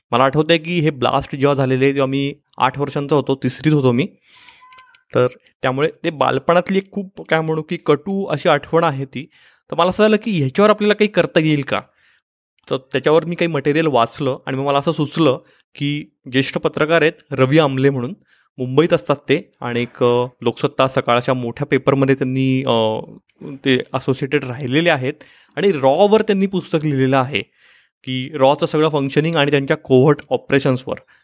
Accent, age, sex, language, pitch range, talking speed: native, 30-49, male, Marathi, 130-165 Hz, 160 wpm